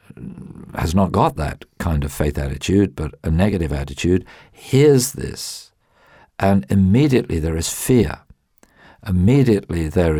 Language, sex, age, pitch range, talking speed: English, male, 50-69, 80-110 Hz, 125 wpm